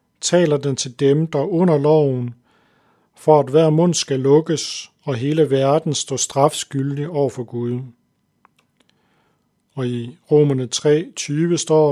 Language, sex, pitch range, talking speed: Danish, male, 135-155 Hz, 135 wpm